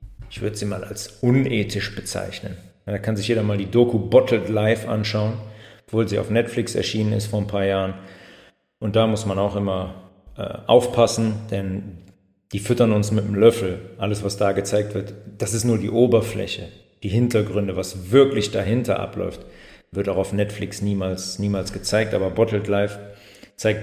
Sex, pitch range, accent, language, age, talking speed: male, 100-115 Hz, German, German, 40-59, 175 wpm